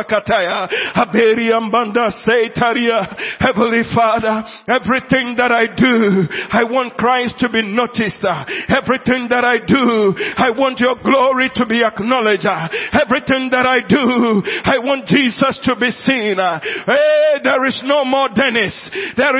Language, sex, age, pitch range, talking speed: English, male, 50-69, 230-265 Hz, 125 wpm